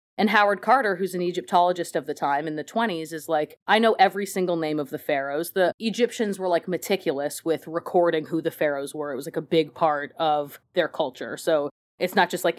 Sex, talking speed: female, 225 wpm